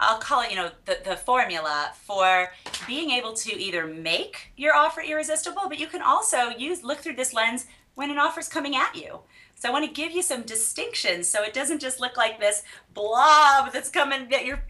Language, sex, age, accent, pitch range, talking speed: English, female, 30-49, American, 205-280 Hz, 210 wpm